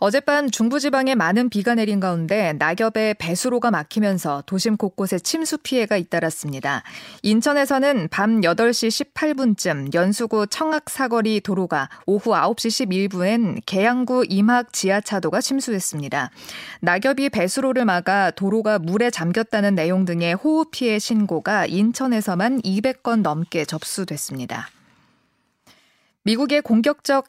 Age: 20-39